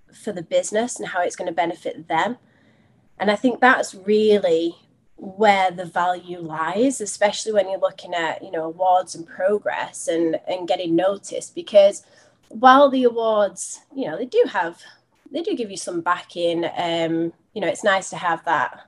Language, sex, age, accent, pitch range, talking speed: English, female, 20-39, British, 175-230 Hz, 180 wpm